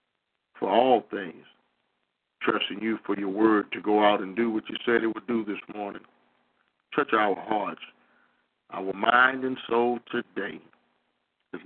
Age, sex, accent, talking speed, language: 50-69, male, American, 155 wpm, English